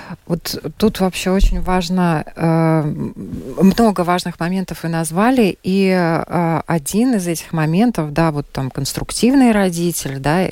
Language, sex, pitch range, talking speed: Russian, female, 150-190 Hz, 125 wpm